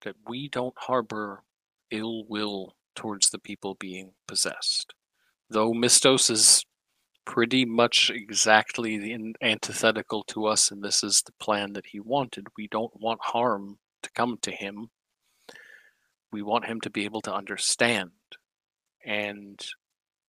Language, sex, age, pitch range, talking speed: English, male, 40-59, 100-115 Hz, 135 wpm